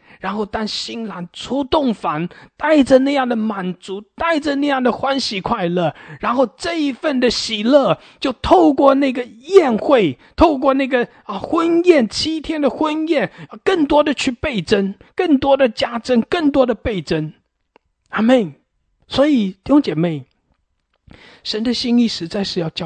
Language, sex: English, male